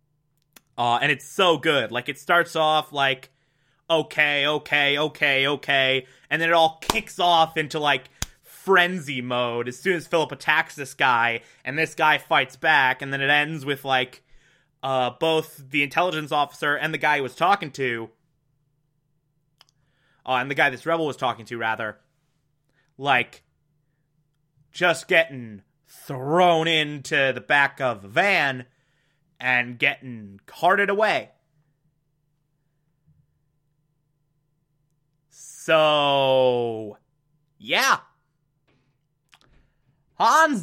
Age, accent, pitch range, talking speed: 20-39, American, 135-160 Hz, 120 wpm